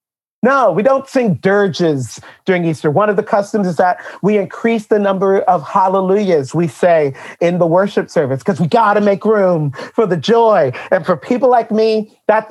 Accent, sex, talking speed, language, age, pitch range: American, male, 190 wpm, English, 40-59, 165-200 Hz